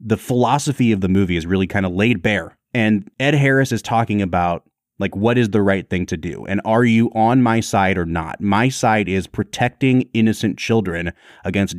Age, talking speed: 30-49, 205 wpm